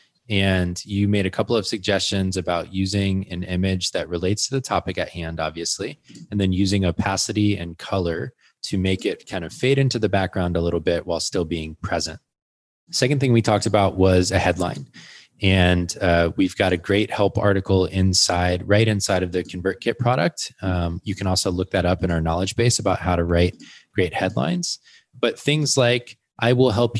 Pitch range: 90-110 Hz